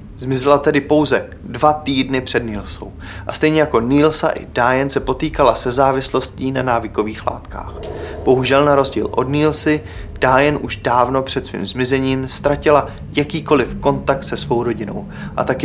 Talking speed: 150 wpm